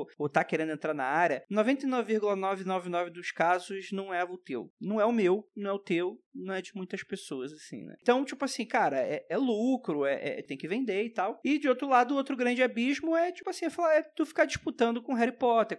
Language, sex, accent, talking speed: Portuguese, male, Brazilian, 235 wpm